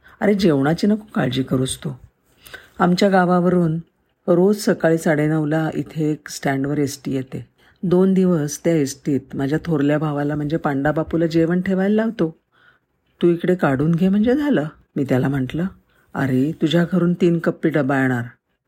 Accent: native